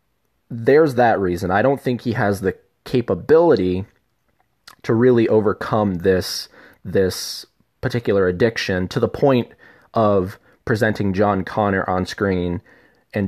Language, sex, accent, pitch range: English, male, American, 90-115 Hz